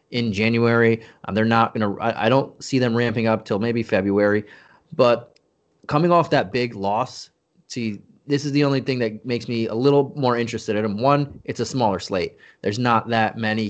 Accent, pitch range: American, 105-125 Hz